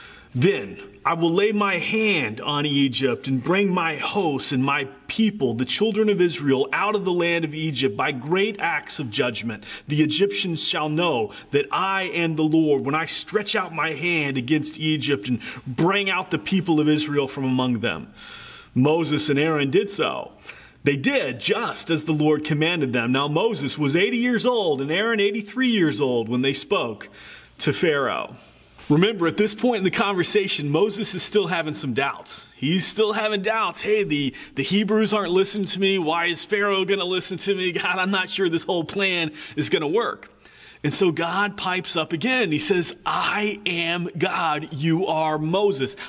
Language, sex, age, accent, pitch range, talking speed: English, male, 30-49, American, 155-210 Hz, 185 wpm